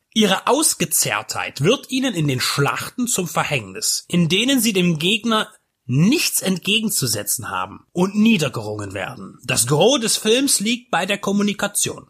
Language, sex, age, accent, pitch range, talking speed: German, male, 30-49, German, 150-225 Hz, 140 wpm